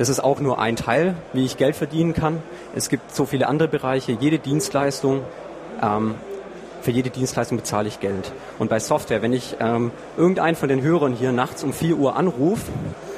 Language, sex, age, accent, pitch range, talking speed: German, male, 30-49, German, 115-150 Hz, 190 wpm